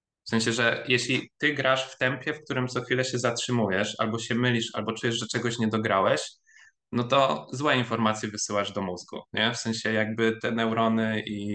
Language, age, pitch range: Polish, 20-39, 105-120 Hz